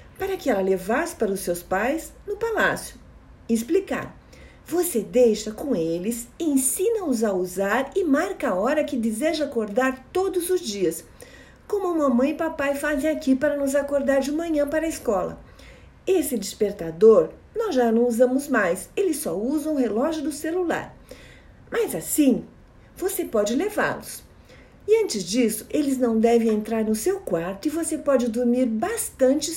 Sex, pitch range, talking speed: female, 230-345 Hz, 155 wpm